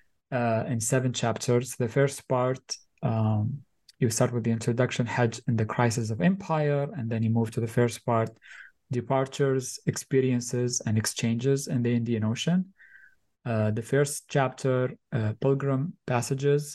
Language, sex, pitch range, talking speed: English, male, 120-145 Hz, 150 wpm